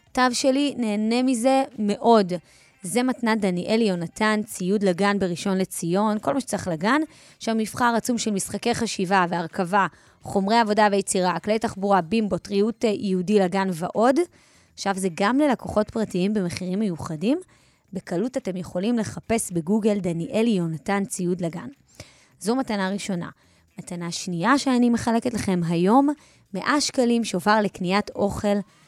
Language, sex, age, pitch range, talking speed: Hebrew, female, 20-39, 185-225 Hz, 135 wpm